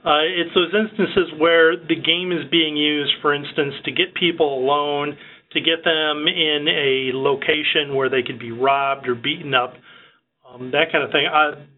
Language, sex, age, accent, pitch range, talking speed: English, male, 40-59, American, 145-170 Hz, 185 wpm